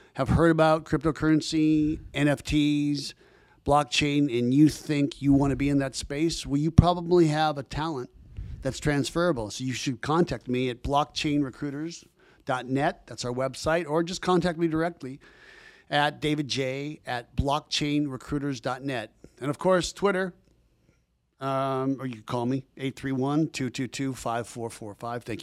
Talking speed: 130 wpm